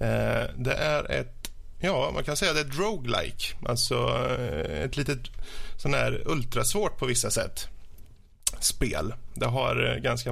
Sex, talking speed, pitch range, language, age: male, 135 wpm, 115-140 Hz, Swedish, 20-39